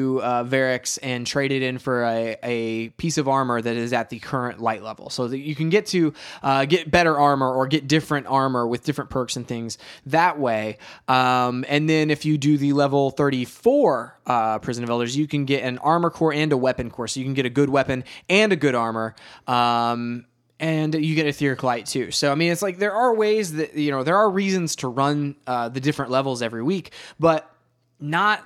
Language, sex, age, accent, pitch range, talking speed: English, male, 20-39, American, 125-155 Hz, 225 wpm